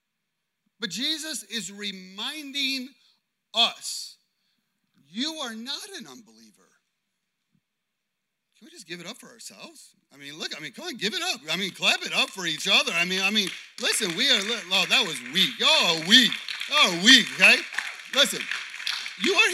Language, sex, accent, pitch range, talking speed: English, male, American, 200-250 Hz, 170 wpm